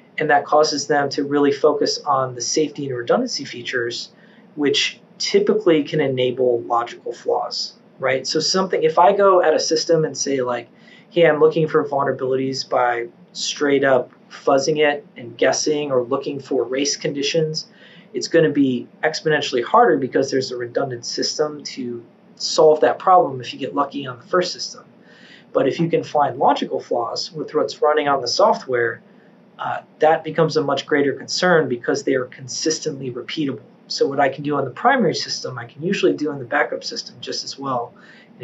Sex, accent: male, American